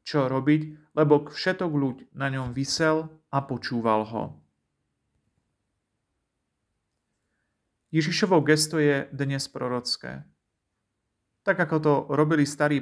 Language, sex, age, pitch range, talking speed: Slovak, male, 40-59, 125-155 Hz, 105 wpm